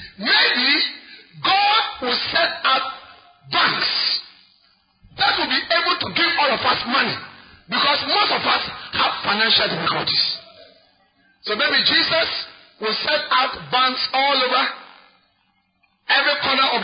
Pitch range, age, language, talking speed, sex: 245-325 Hz, 40-59, English, 125 wpm, male